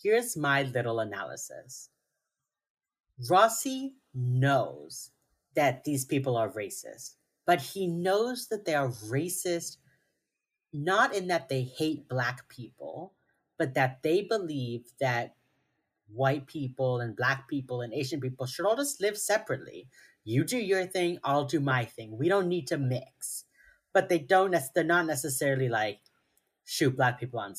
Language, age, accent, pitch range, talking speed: English, 30-49, American, 125-175 Hz, 145 wpm